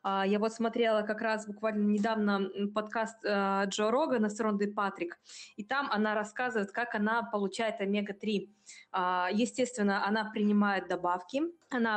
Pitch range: 195-225 Hz